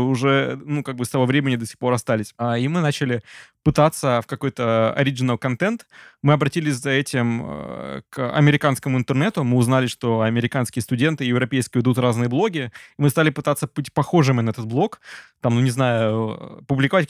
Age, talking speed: 20-39, 170 wpm